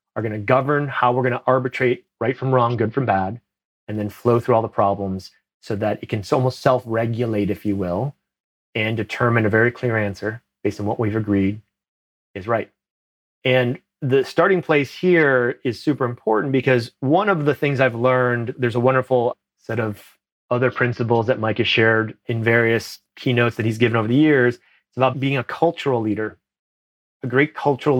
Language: English